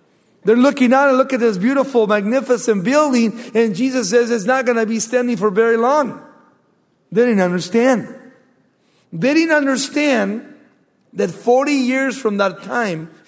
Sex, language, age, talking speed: male, English, 50-69, 155 wpm